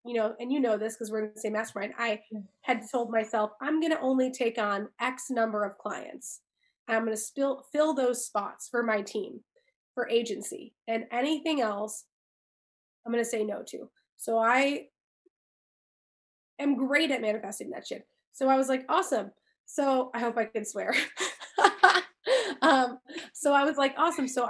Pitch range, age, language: 215-260 Hz, 20-39, English